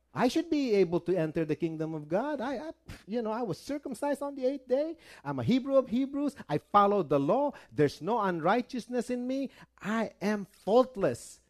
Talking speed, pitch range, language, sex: 200 wpm, 160-230 Hz, English, male